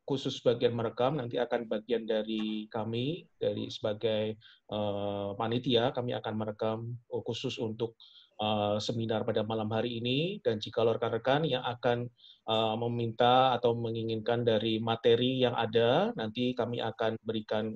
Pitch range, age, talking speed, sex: 110-125 Hz, 20-39, 135 wpm, male